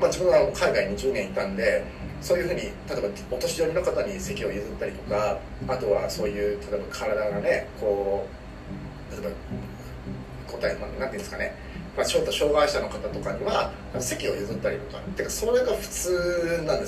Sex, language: male, Japanese